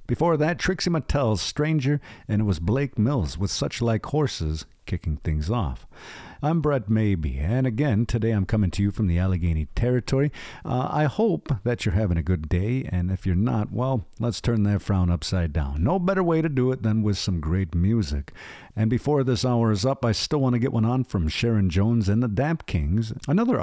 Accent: American